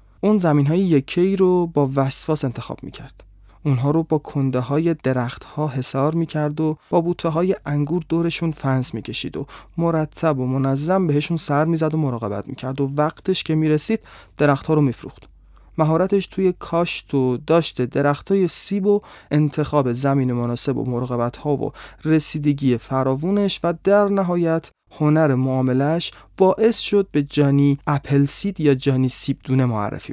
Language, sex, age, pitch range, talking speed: Persian, male, 30-49, 130-165 Hz, 155 wpm